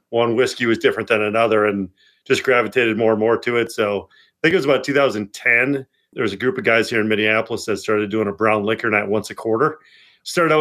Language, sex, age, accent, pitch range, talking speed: English, male, 40-59, American, 110-135 Hz, 240 wpm